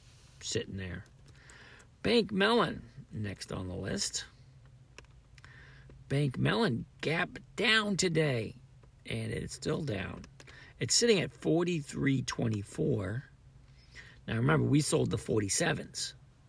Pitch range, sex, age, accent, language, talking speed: 110-150 Hz, male, 50-69, American, English, 100 wpm